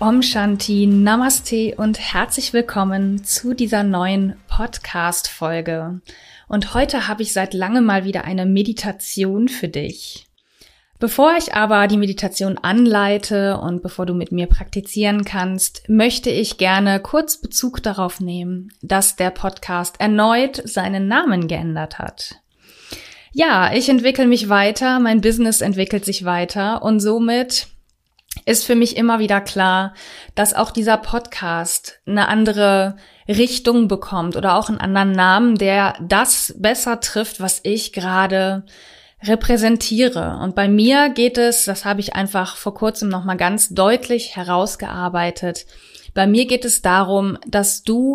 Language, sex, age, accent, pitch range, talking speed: German, female, 30-49, German, 190-230 Hz, 140 wpm